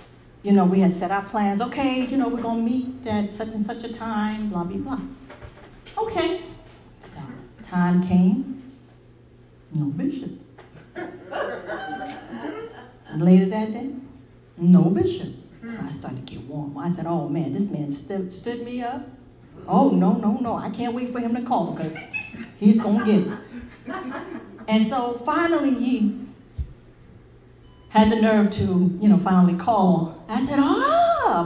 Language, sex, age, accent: English, female, 40-59, American